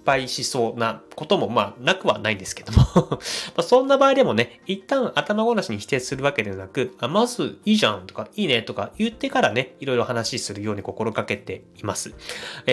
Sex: male